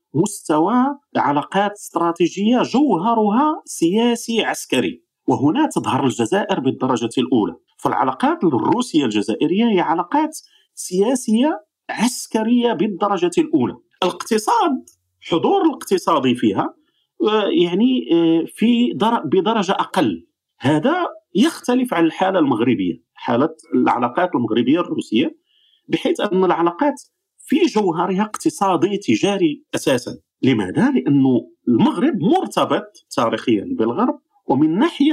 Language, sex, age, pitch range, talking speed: Arabic, male, 50-69, 195-315 Hz, 90 wpm